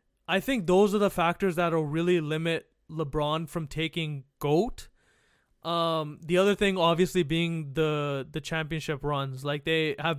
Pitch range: 155-190 Hz